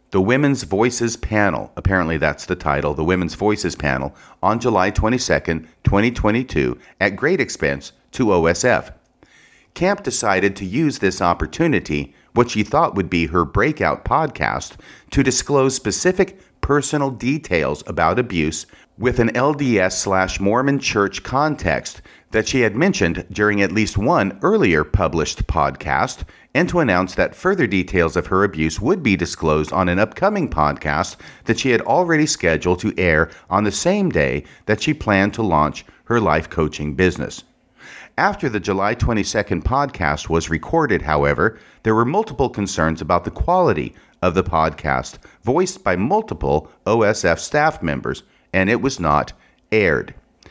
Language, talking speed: English, 150 wpm